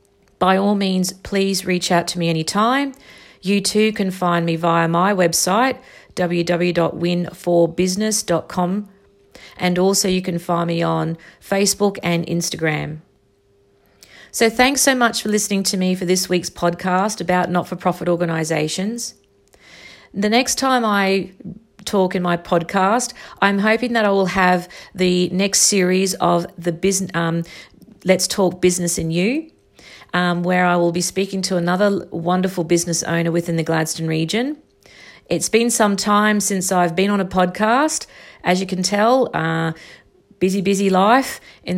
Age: 40-59